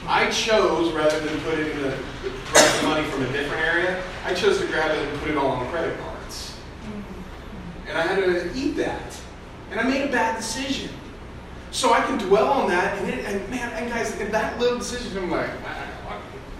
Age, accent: 30-49, American